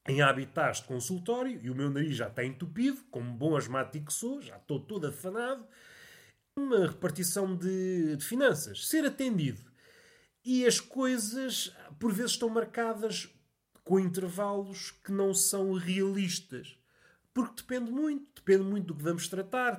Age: 30-49